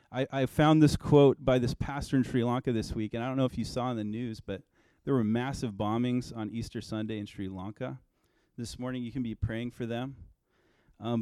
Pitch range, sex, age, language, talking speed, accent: 115-140 Hz, male, 30-49, English, 230 wpm, American